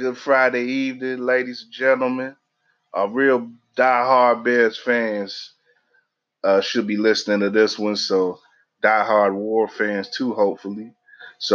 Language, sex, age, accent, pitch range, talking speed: English, male, 20-39, American, 100-125 Hz, 140 wpm